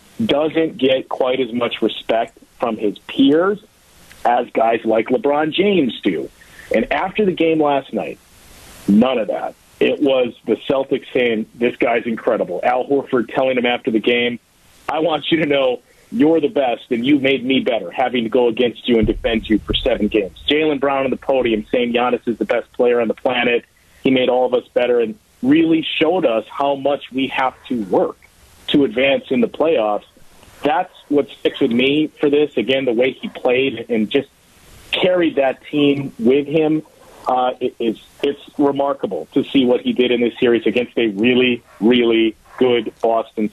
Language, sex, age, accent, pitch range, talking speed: English, male, 40-59, American, 120-145 Hz, 185 wpm